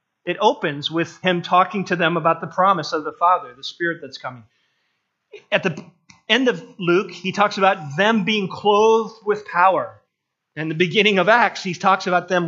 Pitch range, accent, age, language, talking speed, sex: 160-205 Hz, American, 40-59, English, 190 wpm, male